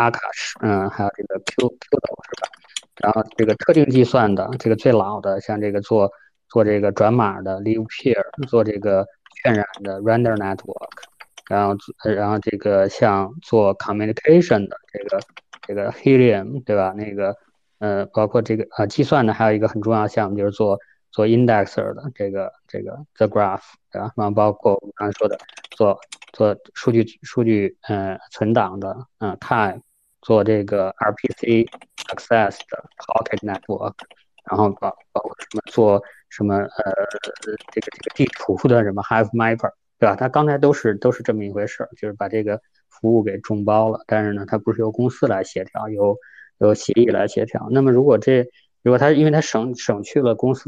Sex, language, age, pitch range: male, Chinese, 20-39, 100-120 Hz